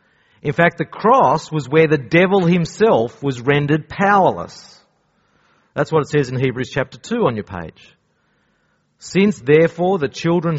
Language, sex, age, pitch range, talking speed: English, male, 40-59, 140-190 Hz, 155 wpm